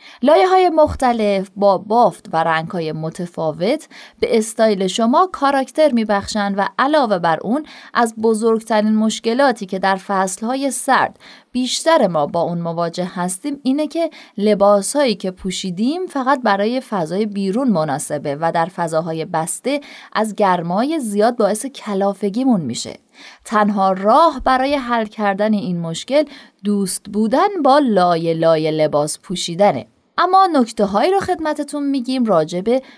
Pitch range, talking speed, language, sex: 175-250 Hz, 135 wpm, Persian, female